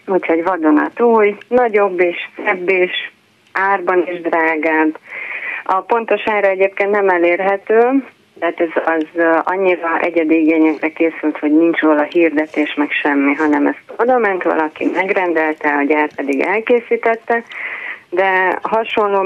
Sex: female